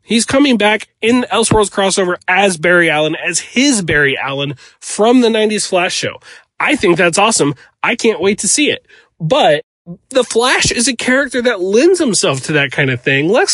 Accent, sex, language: American, male, English